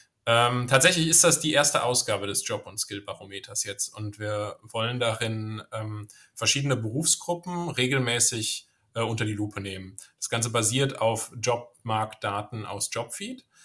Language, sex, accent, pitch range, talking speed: German, male, German, 105-125 Hz, 145 wpm